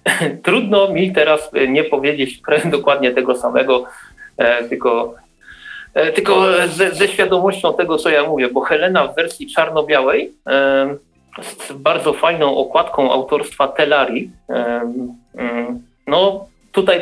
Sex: male